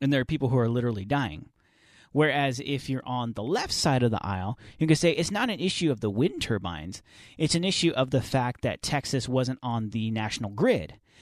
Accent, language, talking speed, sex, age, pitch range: American, English, 225 wpm, male, 30-49, 115-145 Hz